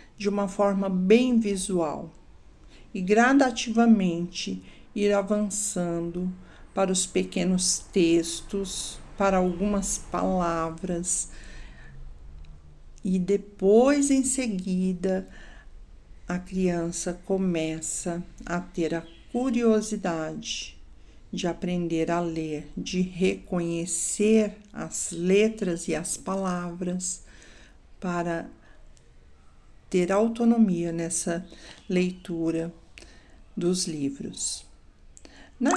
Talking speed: 75 wpm